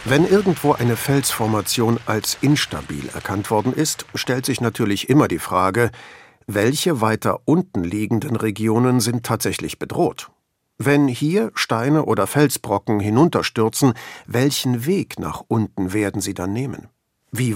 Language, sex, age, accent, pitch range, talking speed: German, male, 50-69, German, 105-130 Hz, 130 wpm